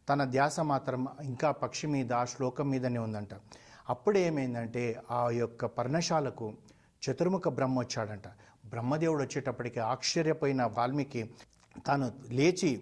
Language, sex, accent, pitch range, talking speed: Telugu, male, native, 120-150 Hz, 105 wpm